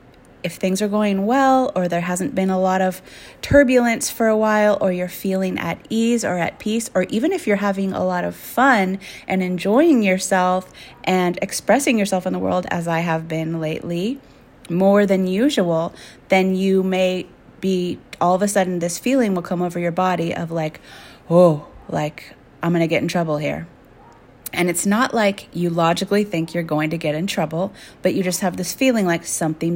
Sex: female